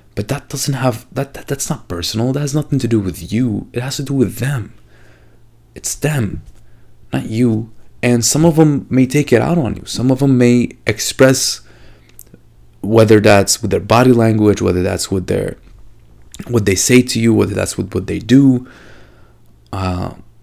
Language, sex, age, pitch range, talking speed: English, male, 30-49, 105-130 Hz, 180 wpm